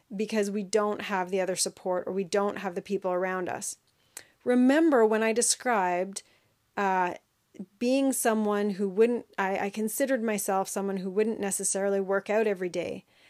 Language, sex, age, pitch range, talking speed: English, female, 30-49, 190-225 Hz, 165 wpm